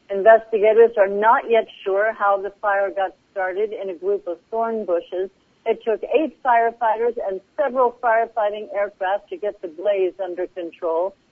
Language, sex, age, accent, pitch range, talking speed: English, female, 60-79, American, 185-225 Hz, 160 wpm